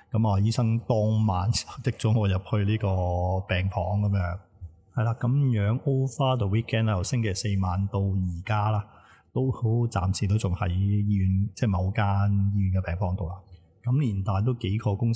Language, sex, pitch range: Chinese, male, 95-110 Hz